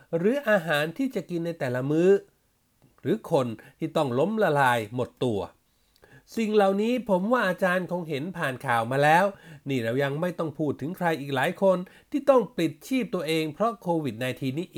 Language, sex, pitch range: Thai, male, 140-190 Hz